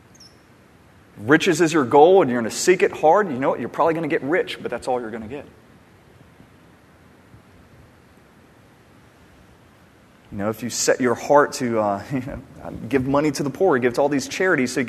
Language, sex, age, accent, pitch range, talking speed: English, male, 30-49, American, 120-150 Hz, 200 wpm